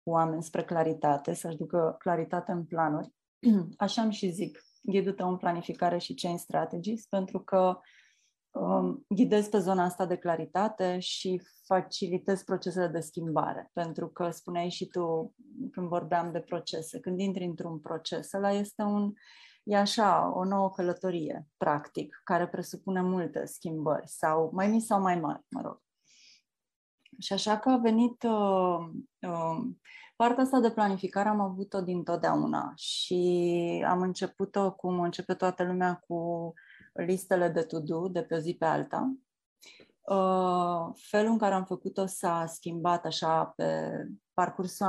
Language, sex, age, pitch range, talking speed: Romanian, female, 30-49, 170-200 Hz, 145 wpm